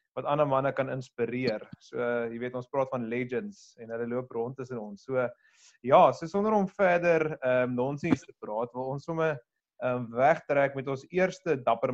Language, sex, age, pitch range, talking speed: English, male, 30-49, 125-160 Hz, 200 wpm